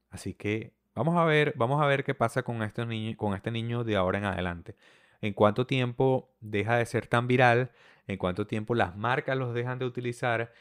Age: 30-49